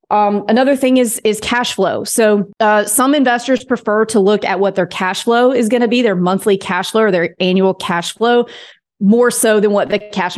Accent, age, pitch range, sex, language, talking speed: American, 30-49, 185-225 Hz, female, English, 220 wpm